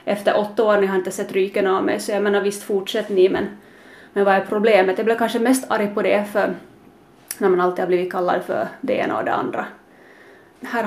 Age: 30-49